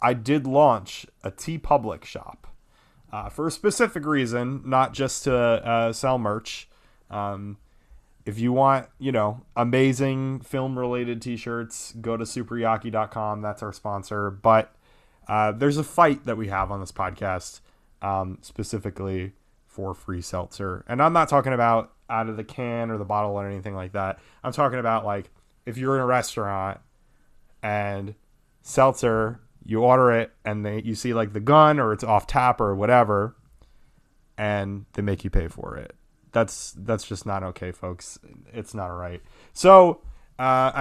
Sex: male